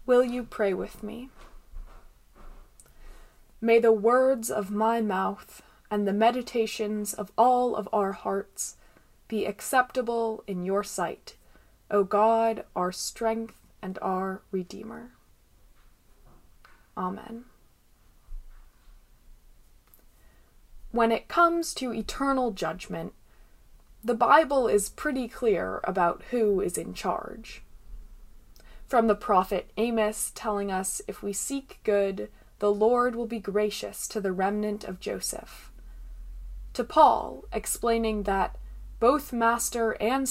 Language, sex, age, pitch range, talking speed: English, female, 20-39, 195-240 Hz, 110 wpm